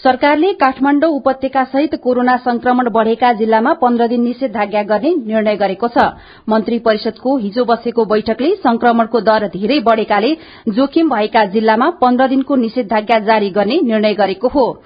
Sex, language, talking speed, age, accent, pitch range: female, English, 145 wpm, 40-59, Indian, 225-270 Hz